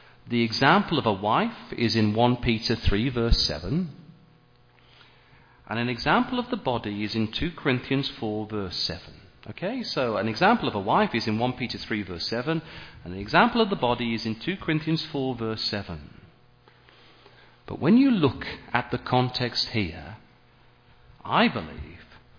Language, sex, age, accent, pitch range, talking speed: English, male, 40-59, British, 110-140 Hz, 165 wpm